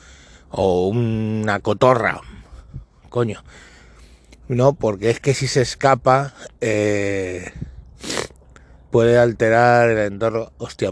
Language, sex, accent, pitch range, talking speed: Spanish, male, Spanish, 100-125 Hz, 95 wpm